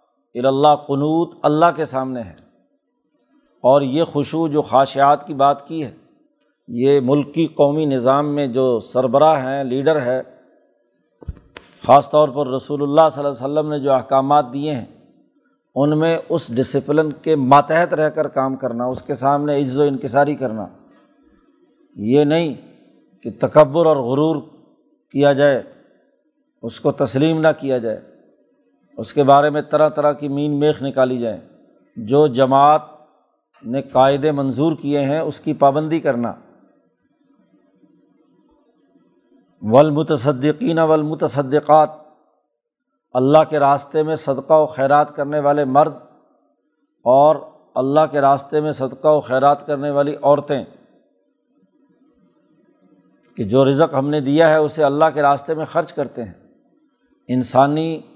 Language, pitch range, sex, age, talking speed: Urdu, 135-155 Hz, male, 50-69, 135 wpm